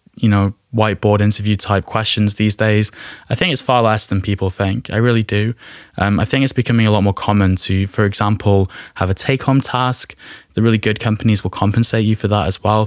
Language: English